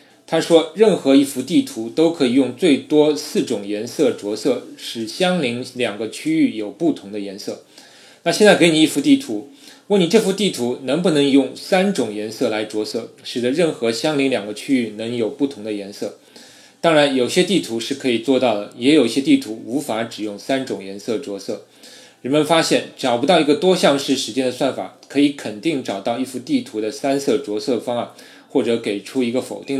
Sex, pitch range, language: male, 115-155 Hz, Chinese